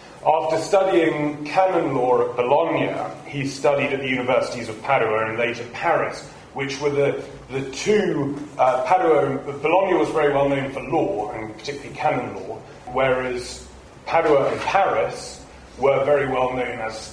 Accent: British